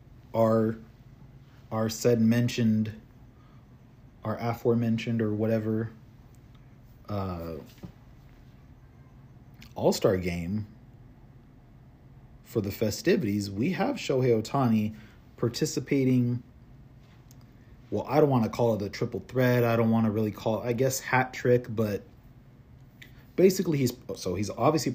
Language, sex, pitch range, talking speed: English, male, 110-130 Hz, 115 wpm